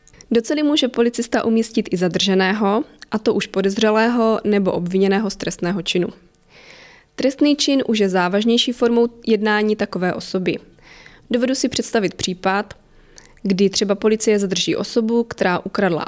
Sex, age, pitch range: female, 20-39, 185-225 Hz